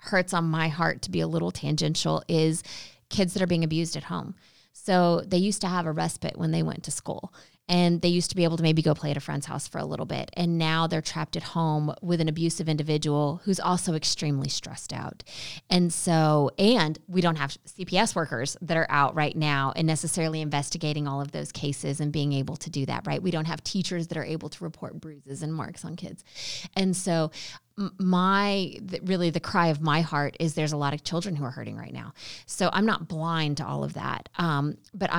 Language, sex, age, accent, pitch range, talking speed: English, female, 20-39, American, 150-180 Hz, 225 wpm